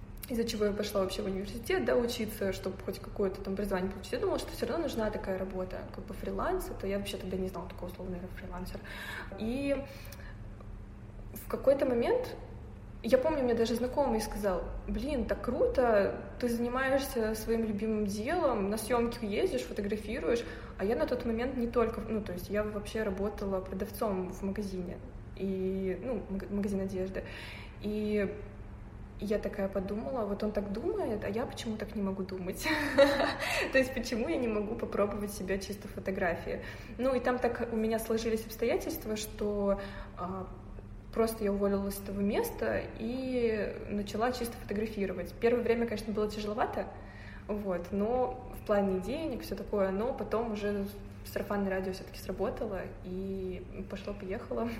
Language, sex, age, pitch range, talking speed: Russian, female, 20-39, 190-225 Hz, 155 wpm